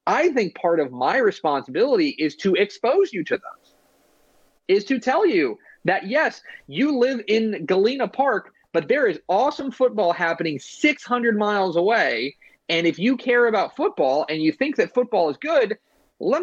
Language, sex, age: English, male, 30-49